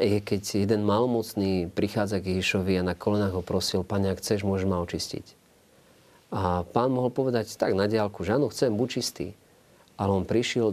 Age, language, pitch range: 40-59, Slovak, 90-110 Hz